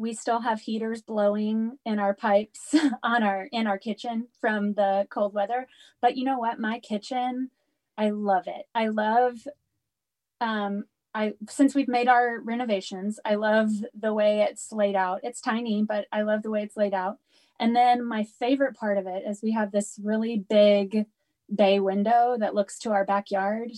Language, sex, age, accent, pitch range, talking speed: English, female, 20-39, American, 200-240 Hz, 180 wpm